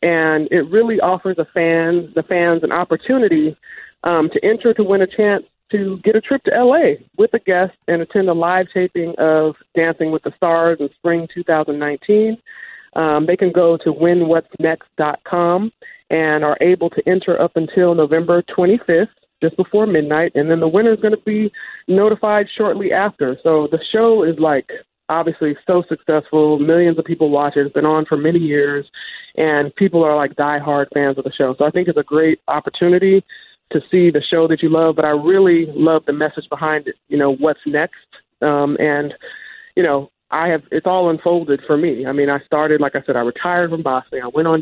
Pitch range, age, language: 150-180 Hz, 40-59, English